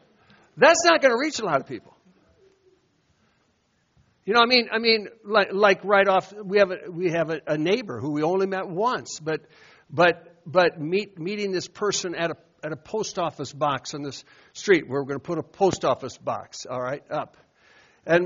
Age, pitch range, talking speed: 60-79, 160-215 Hz, 205 wpm